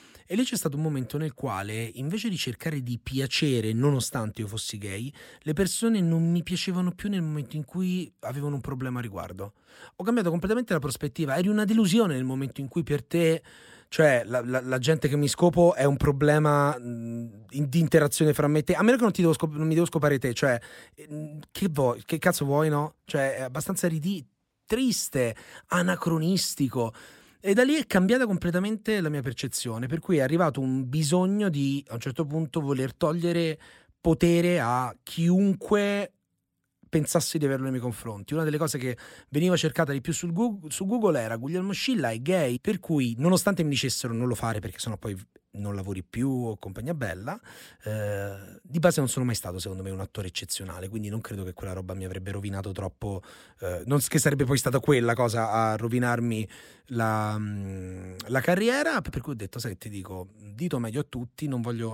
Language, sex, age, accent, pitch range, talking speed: Italian, male, 30-49, native, 115-170 Hz, 195 wpm